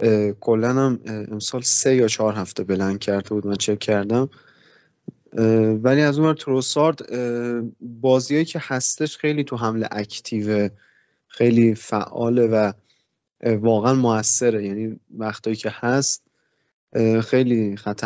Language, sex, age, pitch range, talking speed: Persian, male, 20-39, 105-125 Hz, 120 wpm